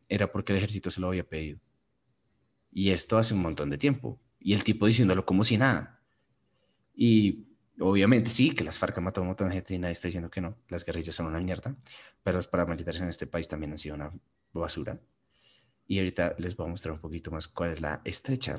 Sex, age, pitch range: male, 30-49, 90-135 Hz